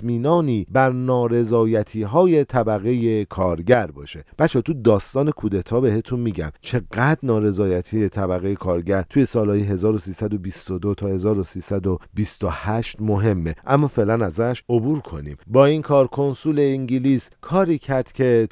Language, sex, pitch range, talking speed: Persian, male, 105-140 Hz, 115 wpm